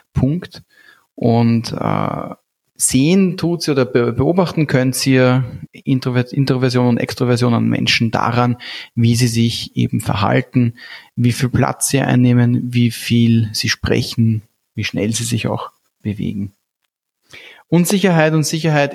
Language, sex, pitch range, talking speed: German, male, 115-135 Hz, 125 wpm